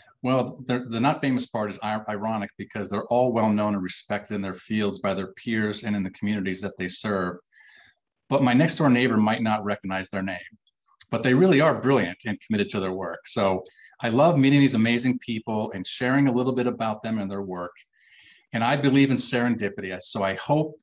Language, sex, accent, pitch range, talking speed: English, male, American, 105-125 Hz, 210 wpm